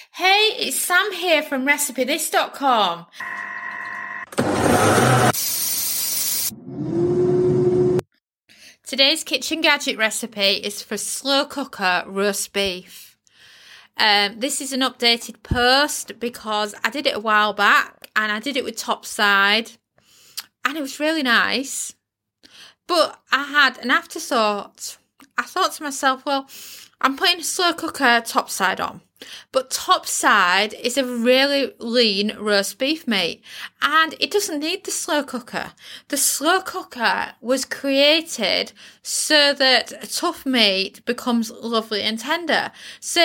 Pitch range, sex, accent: 215-290 Hz, female, British